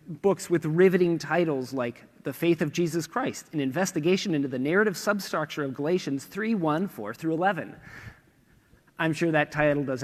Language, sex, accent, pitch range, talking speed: English, male, American, 150-200 Hz, 165 wpm